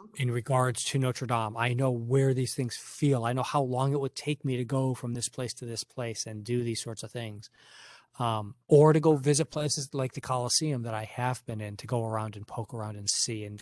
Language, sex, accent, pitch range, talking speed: English, male, American, 115-150 Hz, 245 wpm